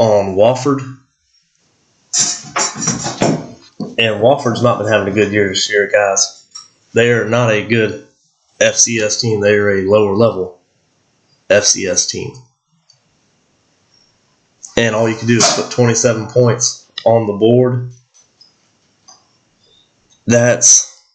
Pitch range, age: 110-130 Hz, 30-49